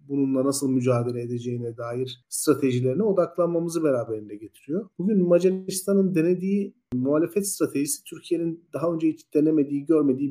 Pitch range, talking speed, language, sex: 125-160 Hz, 115 wpm, Turkish, male